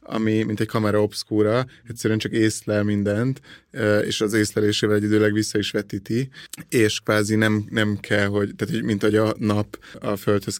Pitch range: 105-115 Hz